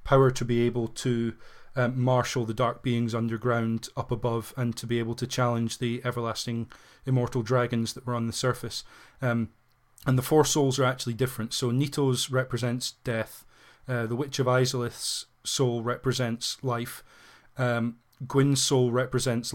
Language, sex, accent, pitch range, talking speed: English, male, British, 120-130 Hz, 160 wpm